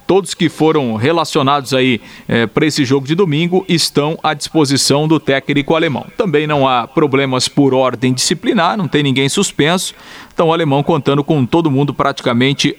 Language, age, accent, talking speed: Portuguese, 40-59, Brazilian, 165 wpm